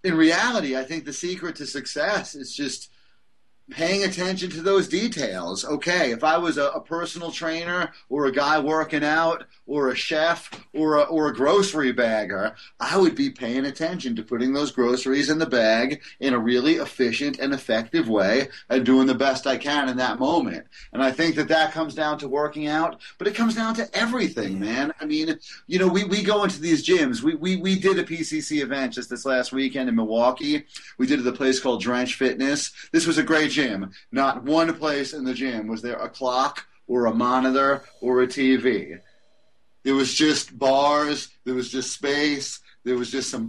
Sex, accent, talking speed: male, American, 205 wpm